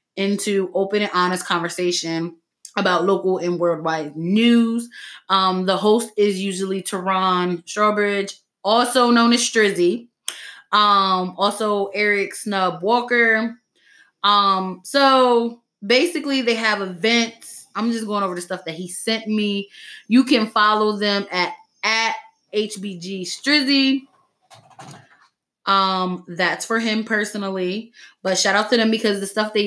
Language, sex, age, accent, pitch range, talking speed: English, female, 20-39, American, 185-230 Hz, 130 wpm